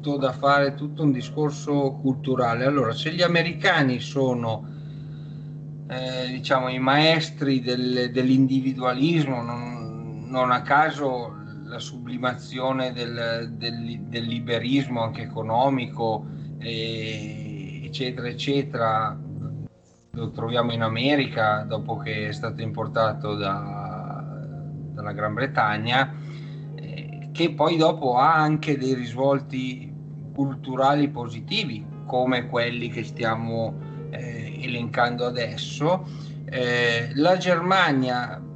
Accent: native